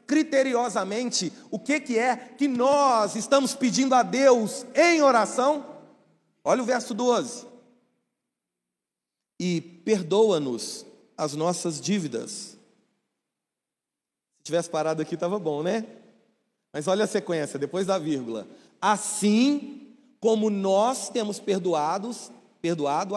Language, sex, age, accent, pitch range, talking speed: Portuguese, male, 40-59, Brazilian, 205-275 Hz, 110 wpm